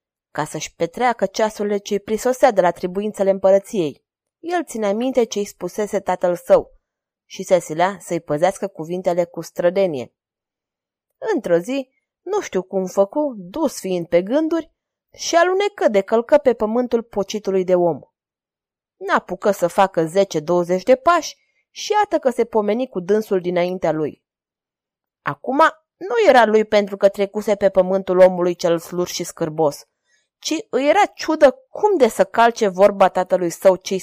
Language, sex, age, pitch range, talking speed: Romanian, female, 20-39, 180-265 Hz, 150 wpm